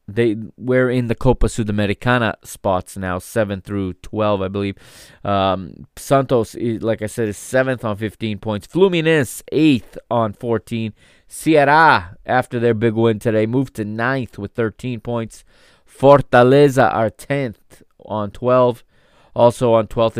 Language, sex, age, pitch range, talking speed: English, male, 20-39, 105-130 Hz, 140 wpm